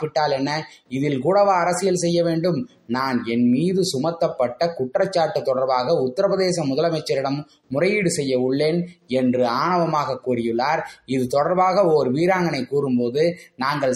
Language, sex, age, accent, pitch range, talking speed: Tamil, male, 20-39, native, 135-180 Hz, 105 wpm